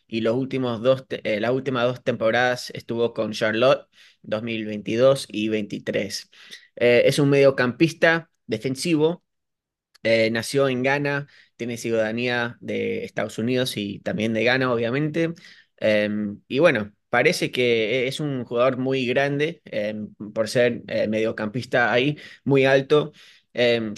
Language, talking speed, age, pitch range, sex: Spanish, 135 wpm, 20-39, 115-140 Hz, male